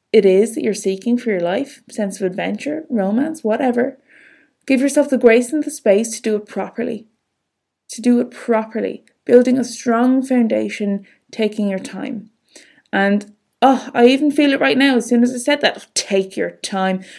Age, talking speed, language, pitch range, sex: 20-39, 180 wpm, English, 205-255 Hz, female